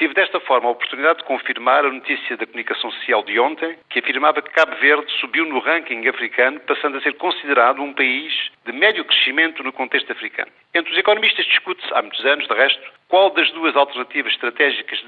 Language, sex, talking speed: Portuguese, male, 200 wpm